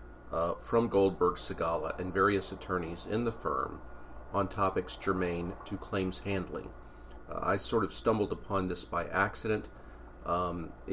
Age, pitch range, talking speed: 40-59, 85-100 Hz, 135 wpm